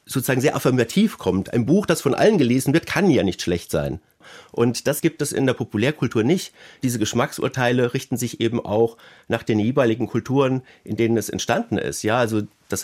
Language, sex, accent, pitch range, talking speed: German, male, German, 115-145 Hz, 195 wpm